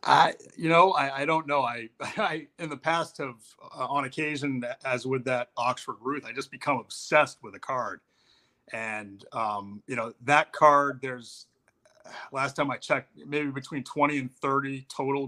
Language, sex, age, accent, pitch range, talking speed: English, male, 30-49, American, 115-145 Hz, 175 wpm